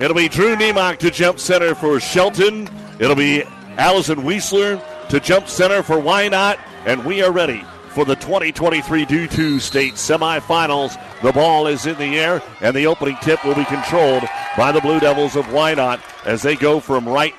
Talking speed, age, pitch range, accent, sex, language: 185 wpm, 50-69, 140-160 Hz, American, male, English